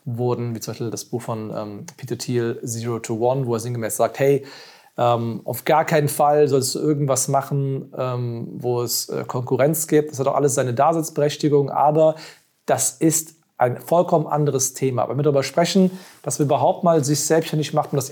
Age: 40-59